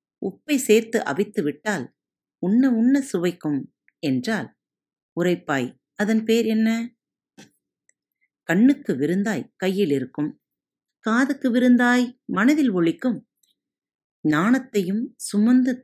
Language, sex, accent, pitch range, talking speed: Tamil, female, native, 160-250 Hz, 85 wpm